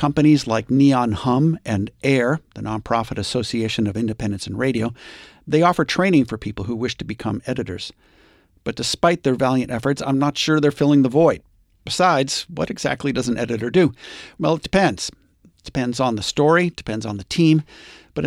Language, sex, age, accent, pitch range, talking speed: English, male, 50-69, American, 110-150 Hz, 180 wpm